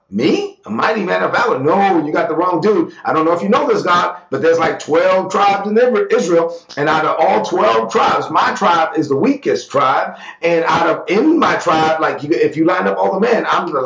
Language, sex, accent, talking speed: English, male, American, 240 wpm